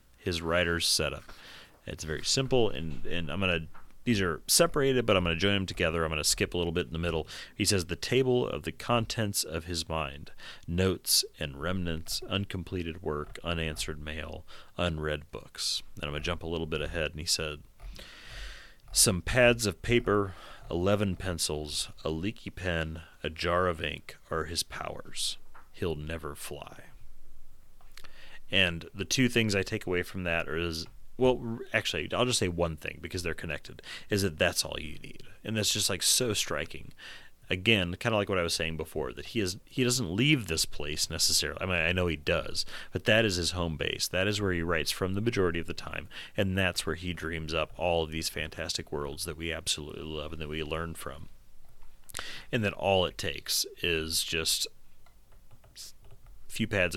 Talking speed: 195 wpm